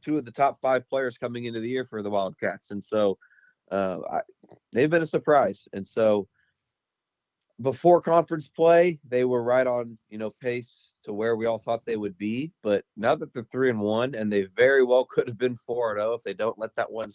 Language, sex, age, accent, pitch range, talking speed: English, male, 30-49, American, 105-130 Hz, 230 wpm